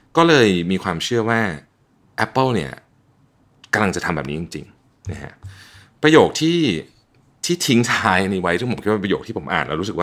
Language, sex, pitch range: Thai, male, 85-120 Hz